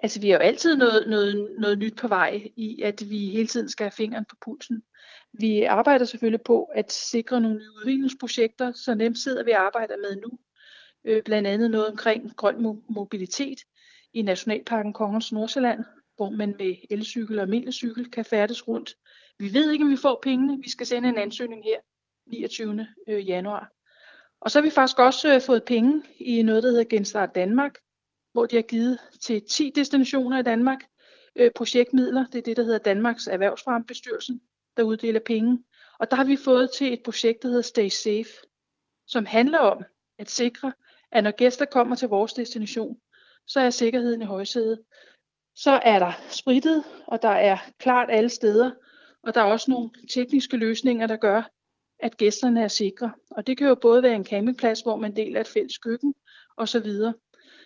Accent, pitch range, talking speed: native, 220-260 Hz, 180 wpm